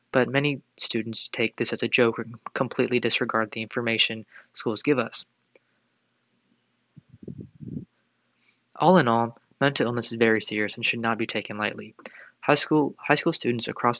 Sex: male